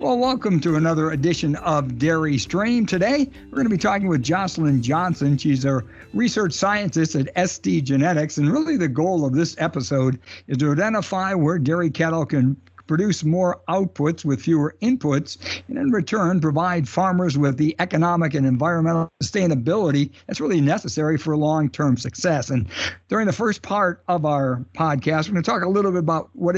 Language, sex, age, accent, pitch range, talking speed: English, male, 60-79, American, 140-175 Hz, 170 wpm